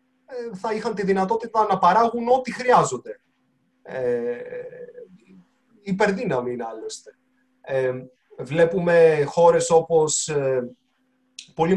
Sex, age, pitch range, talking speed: male, 20-39, 145-235 Hz, 75 wpm